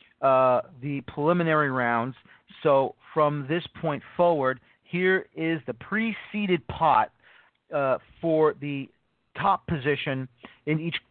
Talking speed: 115 wpm